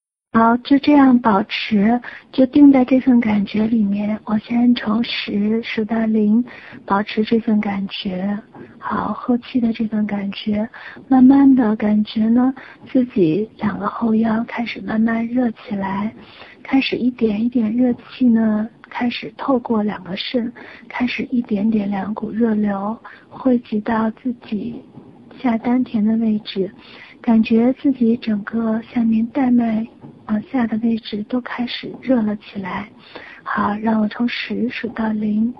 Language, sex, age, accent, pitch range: Chinese, female, 50-69, native, 215-245 Hz